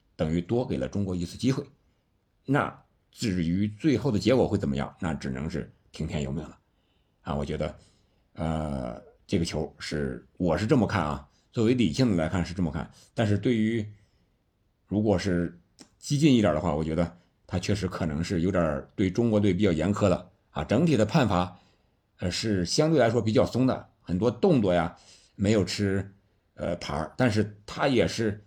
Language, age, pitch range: Chinese, 60-79, 85-110 Hz